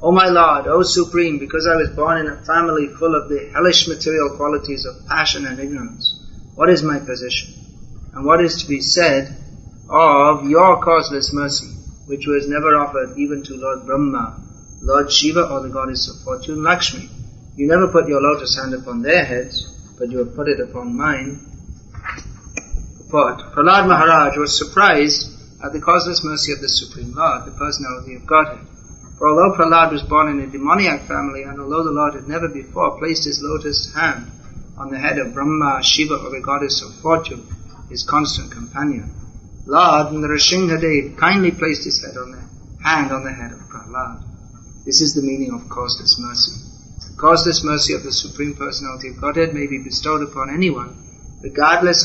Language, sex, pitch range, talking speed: English, male, 130-155 Hz, 180 wpm